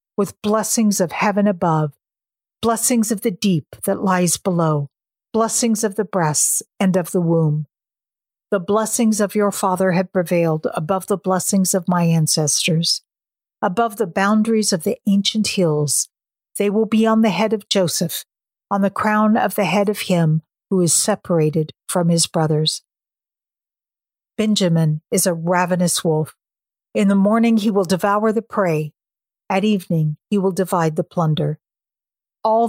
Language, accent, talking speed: English, American, 150 wpm